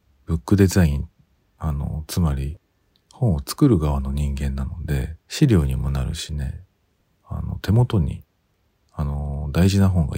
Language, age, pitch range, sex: Japanese, 40-59, 75-95 Hz, male